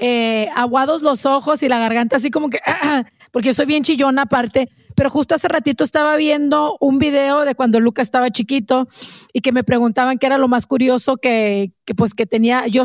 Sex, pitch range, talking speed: female, 245-295 Hz, 205 wpm